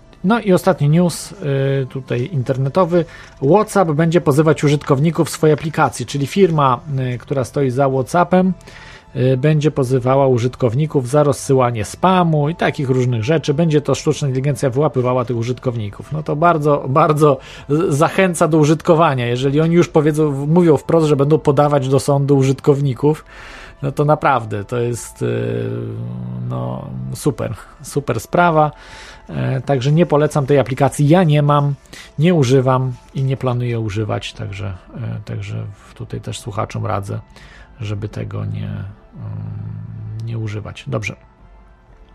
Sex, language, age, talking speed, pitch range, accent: male, Polish, 40-59, 125 wpm, 125-160 Hz, native